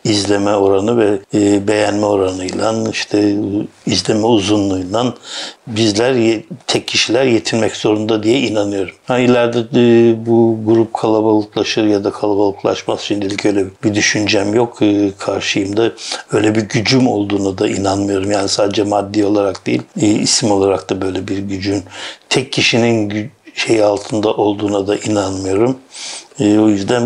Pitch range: 105-120 Hz